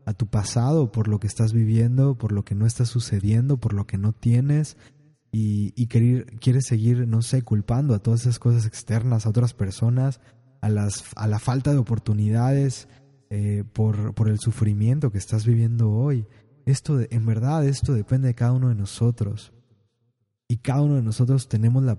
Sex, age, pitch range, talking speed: male, 20-39, 110-140 Hz, 190 wpm